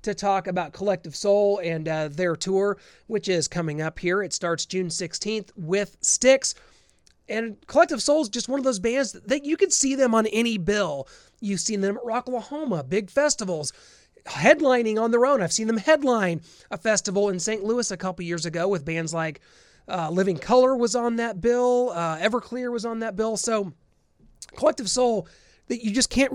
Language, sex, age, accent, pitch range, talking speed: English, male, 30-49, American, 165-225 Hz, 195 wpm